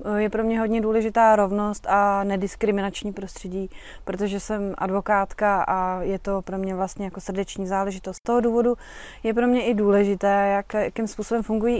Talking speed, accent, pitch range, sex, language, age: 170 wpm, native, 200-225 Hz, female, Czech, 30-49